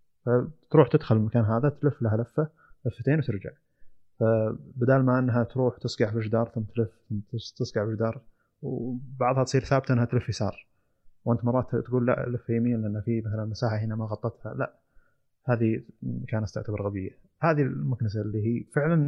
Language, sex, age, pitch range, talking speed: Arabic, male, 20-39, 110-125 Hz, 160 wpm